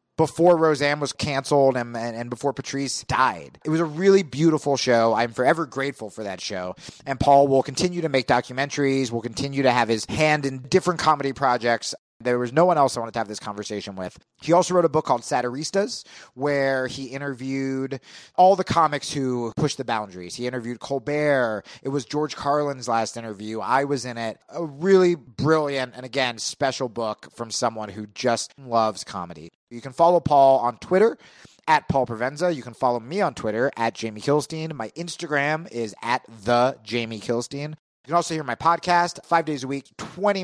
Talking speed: 195 wpm